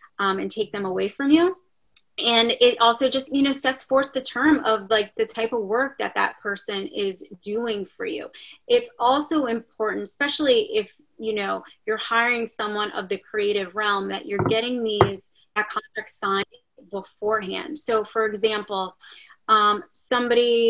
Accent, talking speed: American, 160 wpm